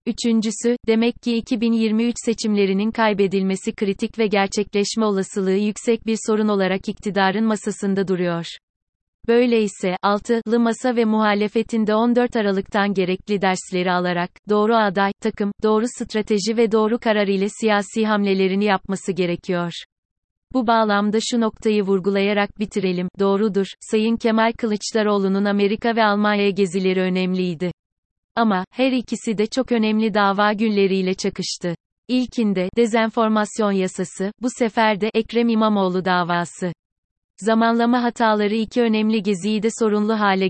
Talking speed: 120 wpm